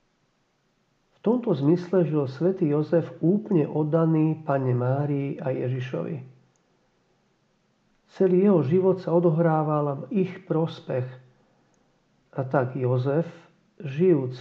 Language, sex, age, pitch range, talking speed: Slovak, male, 50-69, 135-175 Hz, 100 wpm